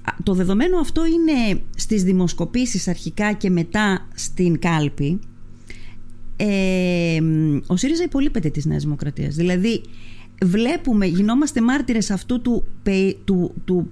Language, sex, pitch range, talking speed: Greek, female, 160-225 Hz, 110 wpm